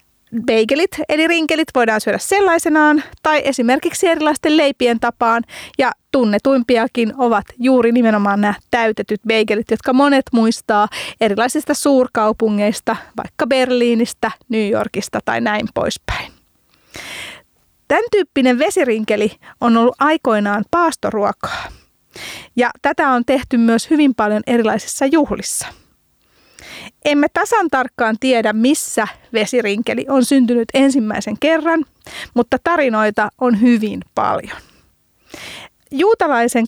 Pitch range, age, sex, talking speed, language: 225-295 Hz, 30-49, female, 105 wpm, Finnish